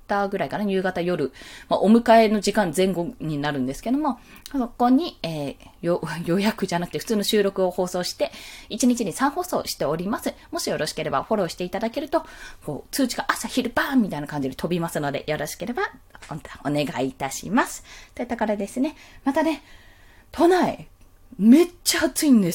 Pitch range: 165-270 Hz